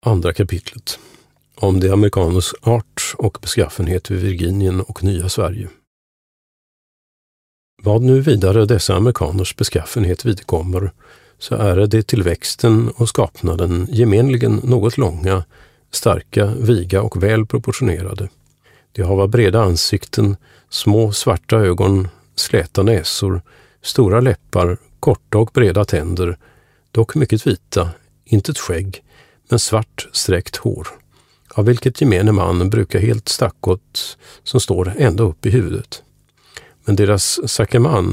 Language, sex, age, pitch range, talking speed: Swedish, male, 40-59, 95-115 Hz, 120 wpm